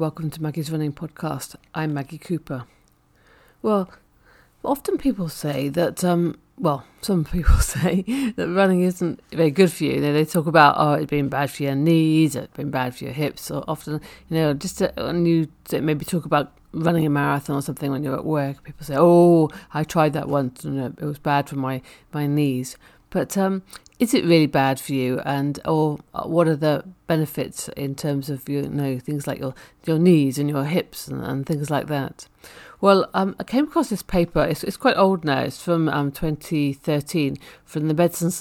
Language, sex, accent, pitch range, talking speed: English, female, British, 140-170 Hz, 200 wpm